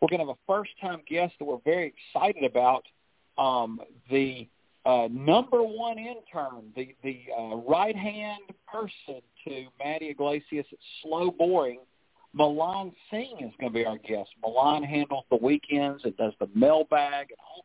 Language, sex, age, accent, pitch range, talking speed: English, male, 50-69, American, 130-170 Hz, 160 wpm